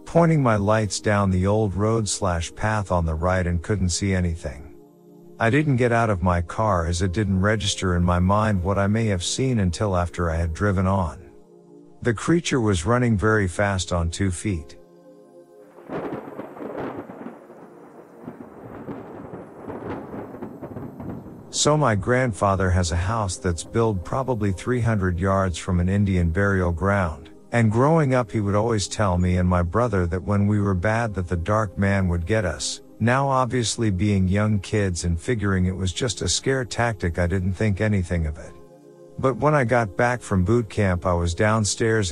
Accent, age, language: American, 50-69, English